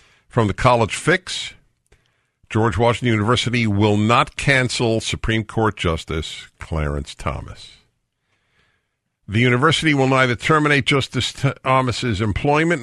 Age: 50-69